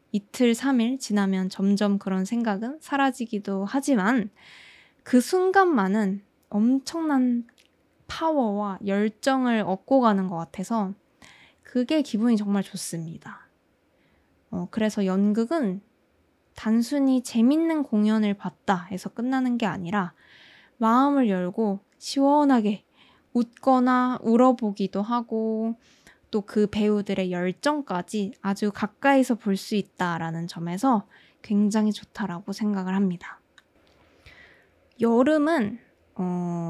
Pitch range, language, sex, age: 195-240 Hz, Korean, female, 20-39